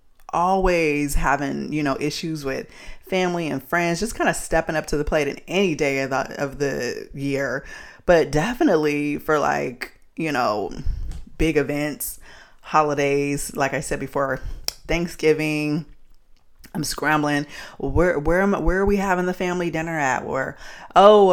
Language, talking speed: English, 150 wpm